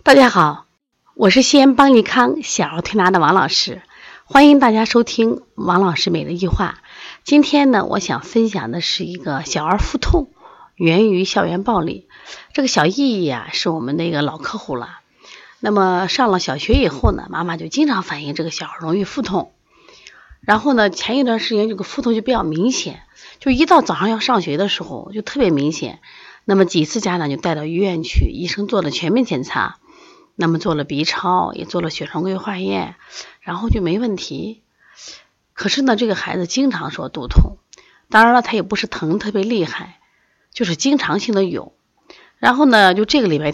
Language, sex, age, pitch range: Chinese, female, 30-49, 170-240 Hz